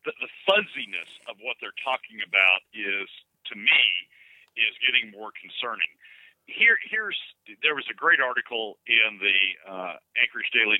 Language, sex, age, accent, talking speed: English, male, 50-69, American, 150 wpm